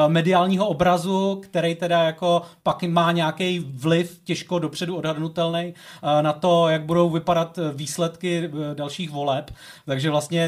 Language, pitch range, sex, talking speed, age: Czech, 155-175 Hz, male, 125 wpm, 30-49